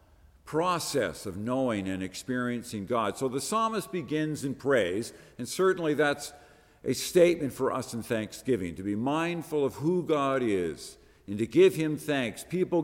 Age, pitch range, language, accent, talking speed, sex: 50-69, 100-150 Hz, English, American, 160 wpm, male